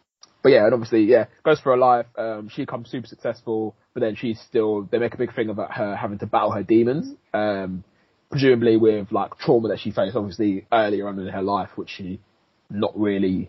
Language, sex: English, male